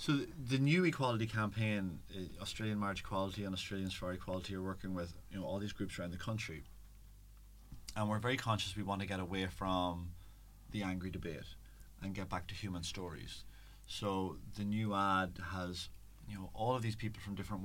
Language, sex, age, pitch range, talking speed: English, male, 30-49, 95-105 Hz, 190 wpm